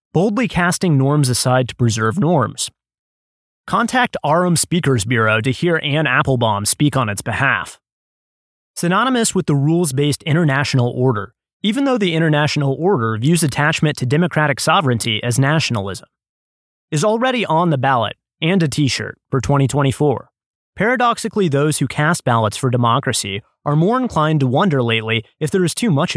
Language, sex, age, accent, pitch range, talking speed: English, male, 20-39, American, 125-175 Hz, 150 wpm